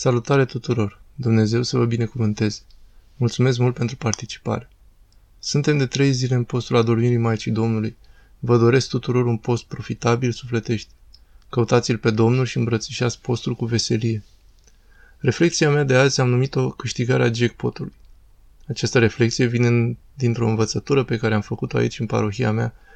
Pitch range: 110-125 Hz